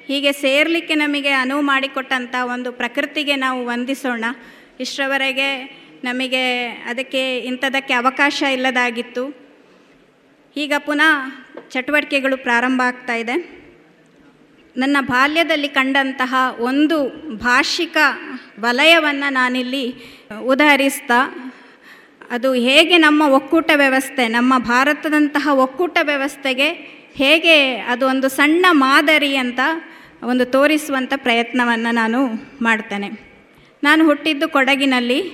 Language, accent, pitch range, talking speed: Kannada, native, 255-300 Hz, 85 wpm